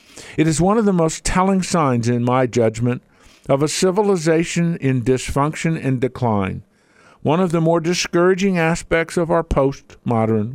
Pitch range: 115-170 Hz